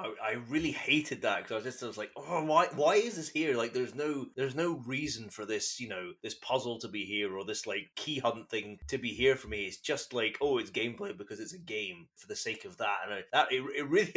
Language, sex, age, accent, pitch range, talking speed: English, male, 20-39, British, 110-155 Hz, 270 wpm